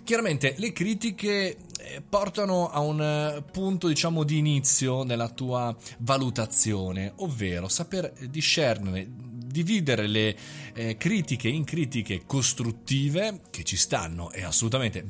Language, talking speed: Italian, 105 wpm